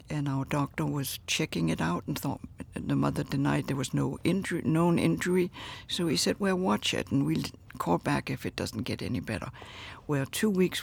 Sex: female